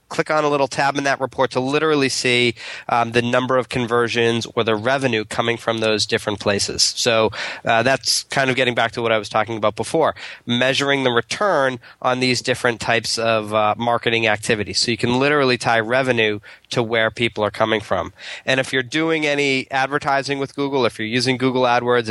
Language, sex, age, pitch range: English, male, 20-39, 115-140 Hz